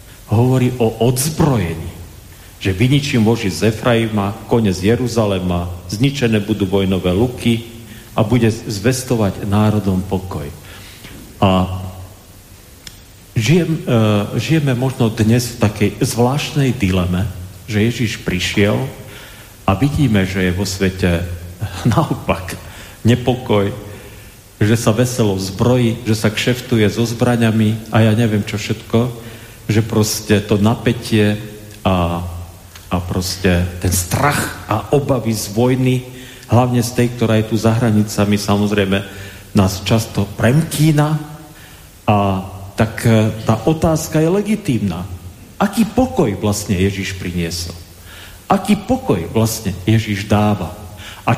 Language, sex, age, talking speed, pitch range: Slovak, male, 40-59, 110 wpm, 100-120 Hz